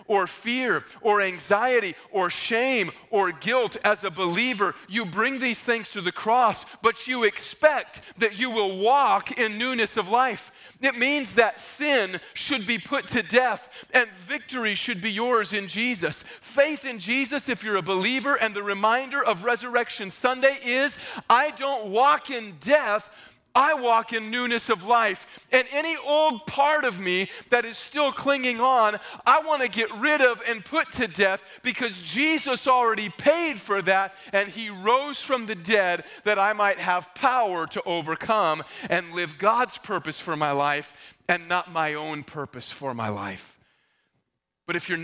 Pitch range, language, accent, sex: 180-250 Hz, English, American, male